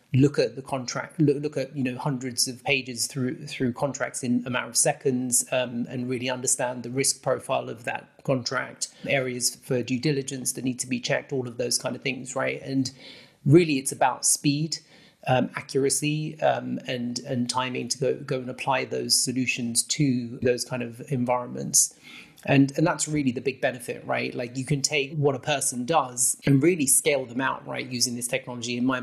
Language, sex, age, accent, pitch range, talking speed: English, male, 30-49, British, 125-140 Hz, 200 wpm